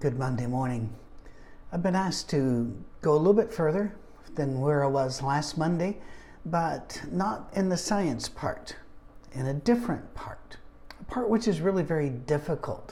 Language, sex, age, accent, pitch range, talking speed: English, male, 60-79, American, 130-165 Hz, 165 wpm